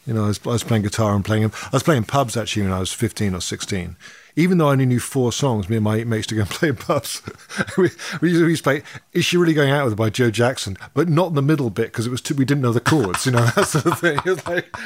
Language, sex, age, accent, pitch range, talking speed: English, male, 50-69, British, 110-145 Hz, 305 wpm